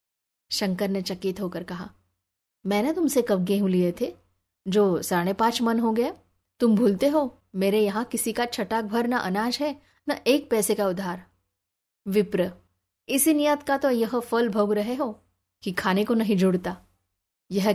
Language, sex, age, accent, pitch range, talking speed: Hindi, female, 20-39, native, 185-240 Hz, 165 wpm